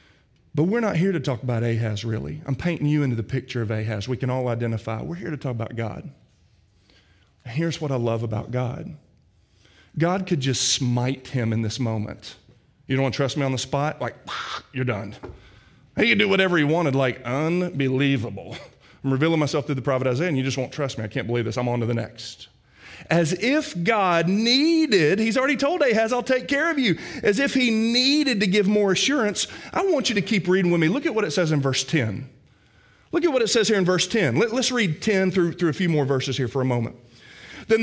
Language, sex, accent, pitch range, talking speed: English, male, American, 125-210 Hz, 230 wpm